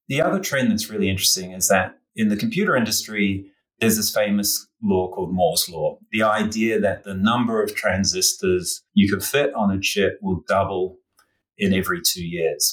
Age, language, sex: 30-49, English, male